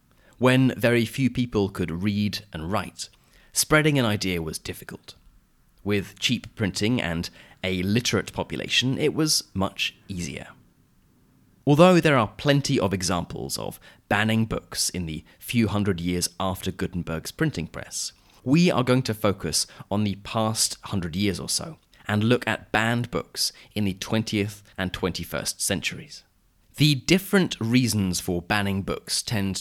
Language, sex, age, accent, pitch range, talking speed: English, male, 30-49, British, 95-120 Hz, 145 wpm